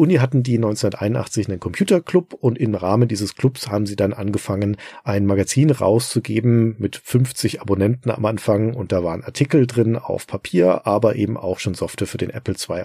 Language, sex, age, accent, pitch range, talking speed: German, male, 40-59, German, 100-125 Hz, 180 wpm